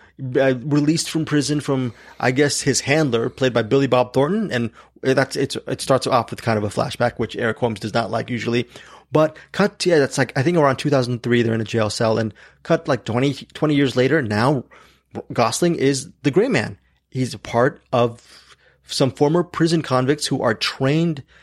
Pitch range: 115-140 Hz